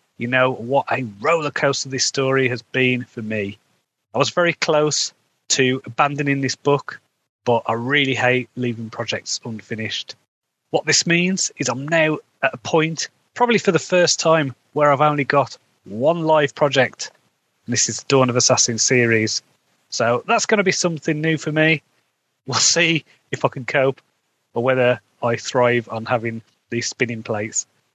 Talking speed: 170 wpm